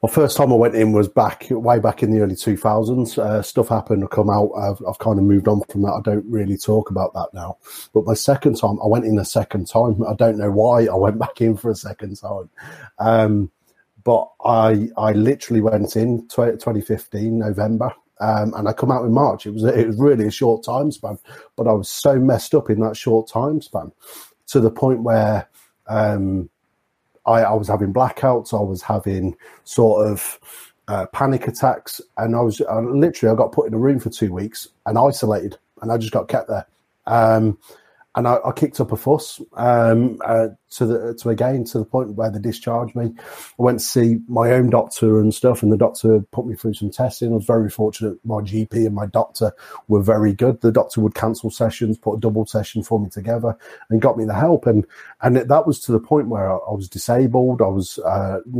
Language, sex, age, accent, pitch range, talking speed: English, male, 30-49, British, 105-120 Hz, 220 wpm